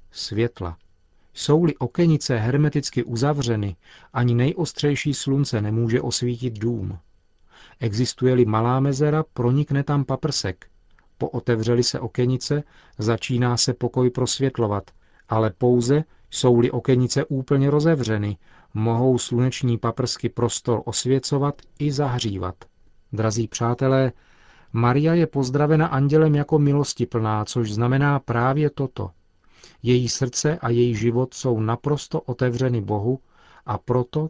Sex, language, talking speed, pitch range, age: male, Czech, 105 wpm, 115-140 Hz, 40-59